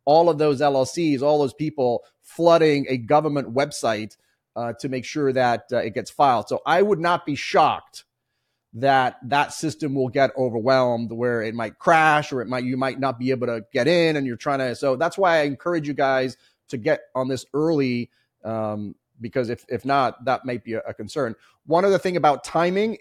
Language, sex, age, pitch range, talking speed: English, male, 30-49, 125-145 Hz, 205 wpm